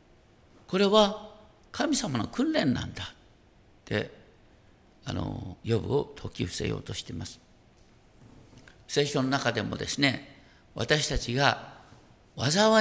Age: 50-69